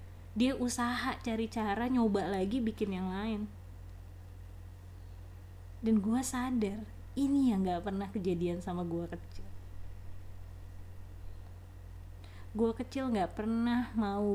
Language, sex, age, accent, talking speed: Indonesian, female, 20-39, native, 105 wpm